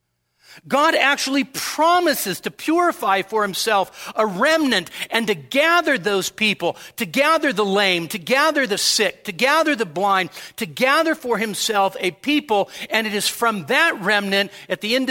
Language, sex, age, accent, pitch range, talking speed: English, male, 50-69, American, 185-295 Hz, 165 wpm